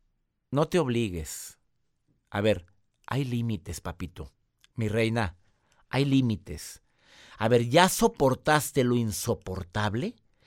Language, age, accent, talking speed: Spanish, 50-69, Mexican, 105 wpm